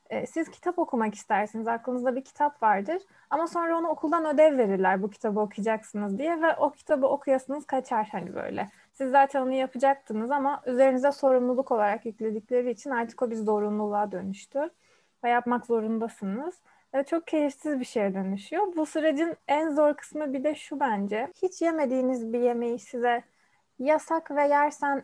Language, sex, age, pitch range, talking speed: Turkish, female, 30-49, 215-290 Hz, 160 wpm